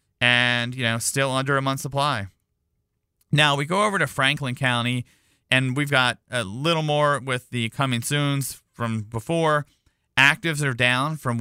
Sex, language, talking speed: male, English, 165 wpm